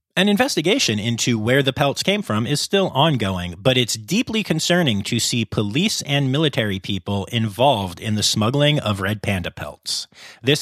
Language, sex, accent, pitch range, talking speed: English, male, American, 110-170 Hz, 170 wpm